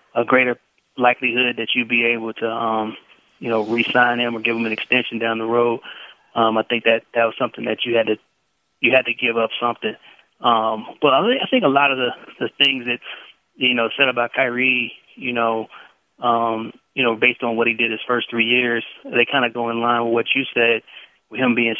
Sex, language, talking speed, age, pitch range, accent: male, English, 225 wpm, 20-39, 115-125 Hz, American